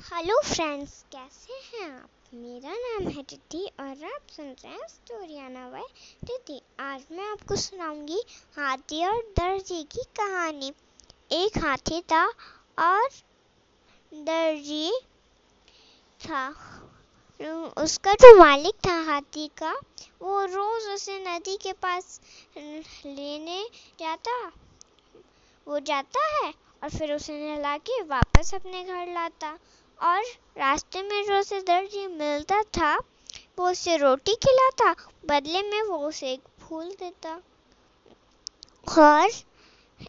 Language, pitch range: Hindi, 305-390 Hz